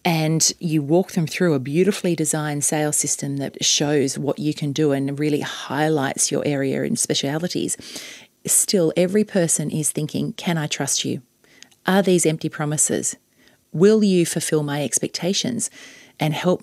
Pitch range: 150-190 Hz